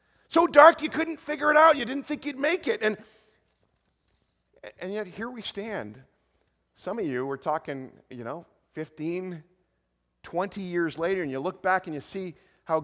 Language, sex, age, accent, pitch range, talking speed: English, male, 40-59, American, 150-215 Hz, 180 wpm